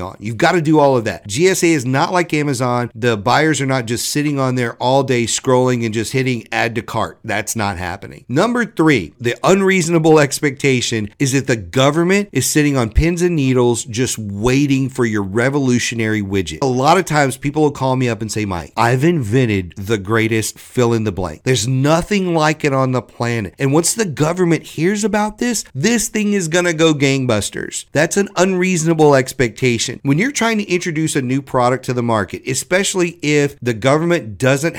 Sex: male